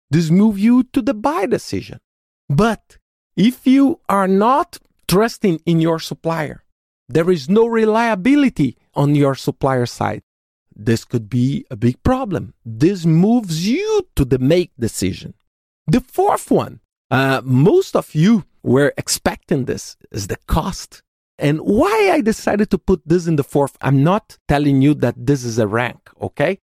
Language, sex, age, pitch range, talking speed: English, male, 50-69, 140-235 Hz, 155 wpm